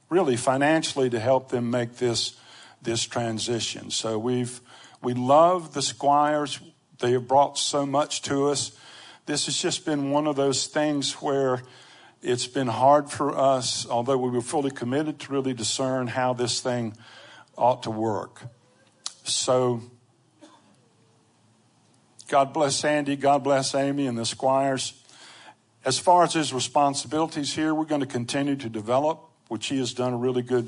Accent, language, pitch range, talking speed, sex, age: American, English, 120-140 Hz, 155 wpm, male, 60-79